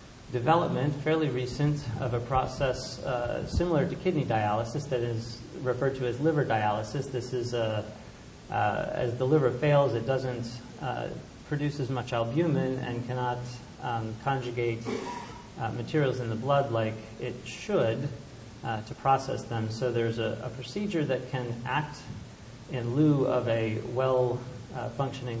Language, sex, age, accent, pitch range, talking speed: English, male, 40-59, American, 115-130 Hz, 145 wpm